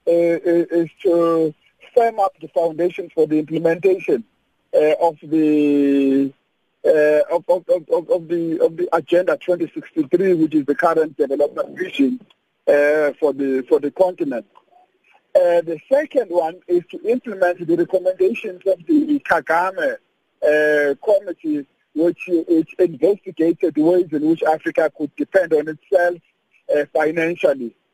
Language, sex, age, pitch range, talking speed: English, male, 50-69, 155-255 Hz, 135 wpm